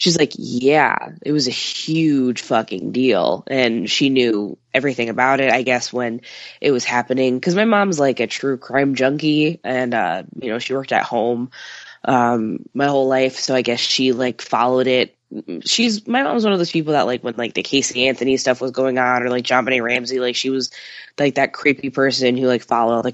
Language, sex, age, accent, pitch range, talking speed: English, female, 10-29, American, 120-145 Hz, 215 wpm